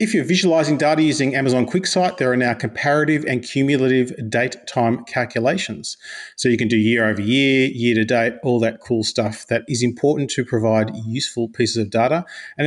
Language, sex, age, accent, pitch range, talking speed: English, male, 30-49, Australian, 115-135 Hz, 185 wpm